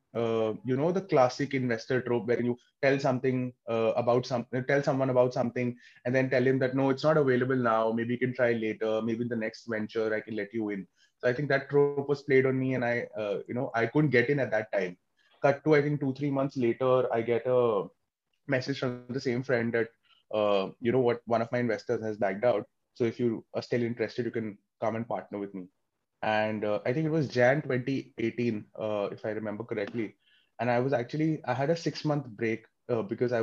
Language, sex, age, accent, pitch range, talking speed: English, male, 20-39, Indian, 115-135 Hz, 235 wpm